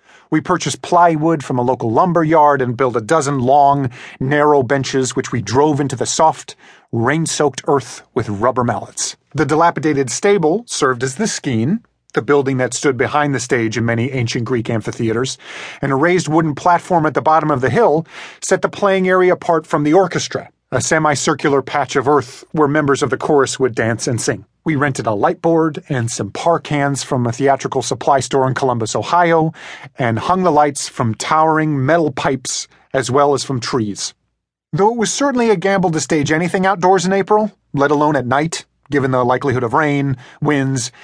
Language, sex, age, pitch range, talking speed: English, male, 40-59, 130-165 Hz, 190 wpm